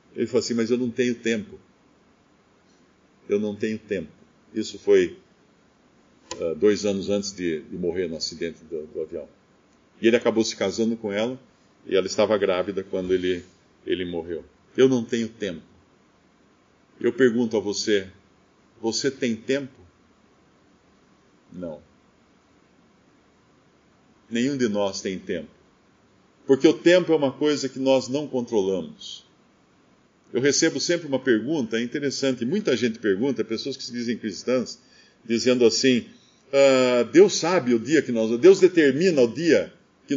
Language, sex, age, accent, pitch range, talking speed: English, male, 50-69, Brazilian, 110-180 Hz, 140 wpm